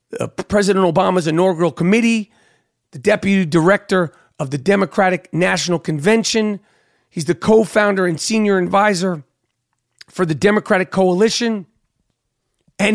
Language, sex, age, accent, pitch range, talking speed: English, male, 40-59, American, 135-200 Hz, 105 wpm